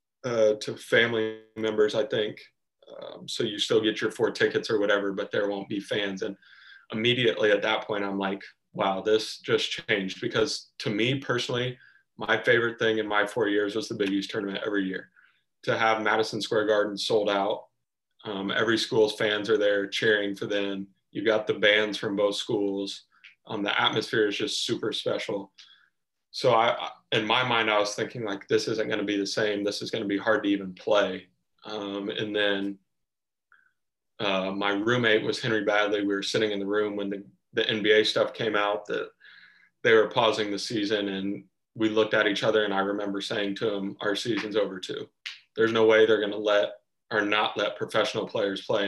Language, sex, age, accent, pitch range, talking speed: English, male, 20-39, American, 100-115 Hz, 200 wpm